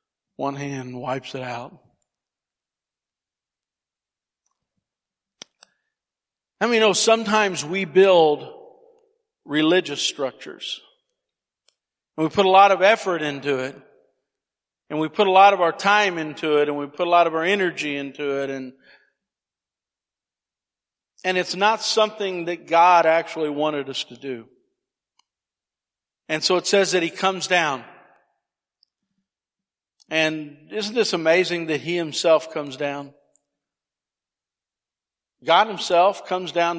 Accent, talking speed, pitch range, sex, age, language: American, 120 wpm, 145-195 Hz, male, 50-69, English